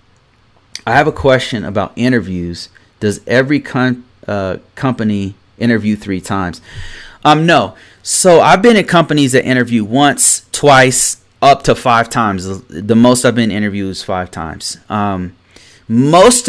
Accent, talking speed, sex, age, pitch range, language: American, 140 wpm, male, 30-49, 100-125 Hz, English